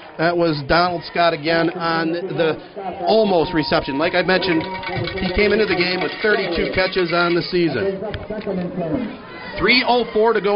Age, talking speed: 40-59, 150 wpm